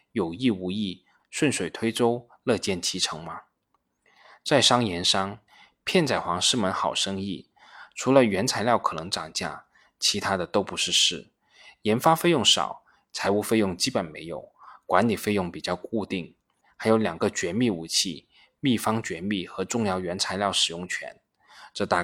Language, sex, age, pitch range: Chinese, male, 20-39, 95-125 Hz